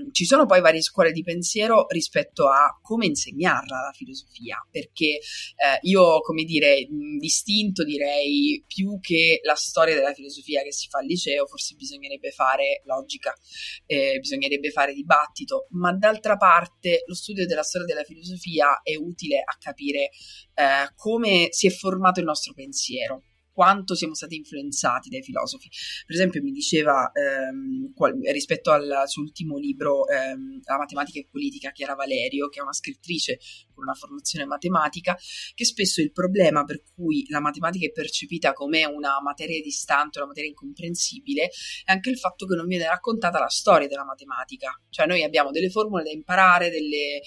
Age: 30-49